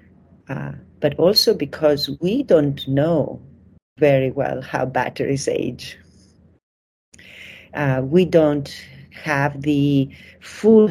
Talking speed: 100 wpm